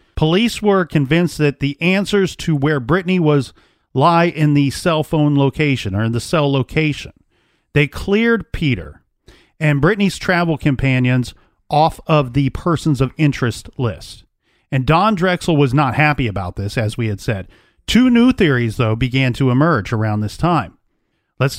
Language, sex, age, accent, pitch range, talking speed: English, male, 40-59, American, 130-165 Hz, 160 wpm